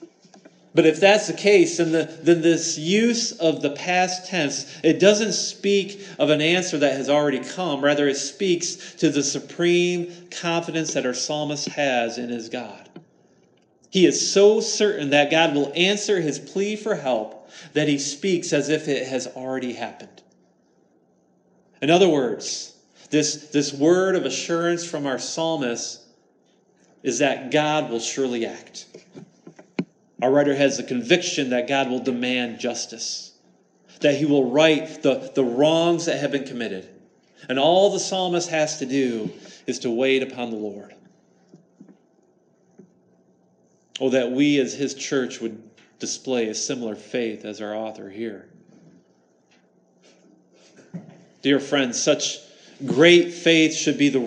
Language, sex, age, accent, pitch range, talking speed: English, male, 40-59, American, 125-170 Hz, 145 wpm